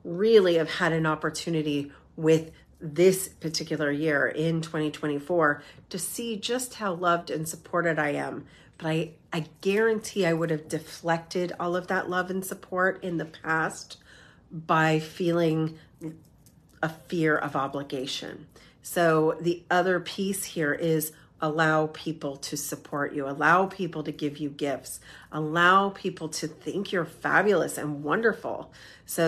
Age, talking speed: 40-59, 140 wpm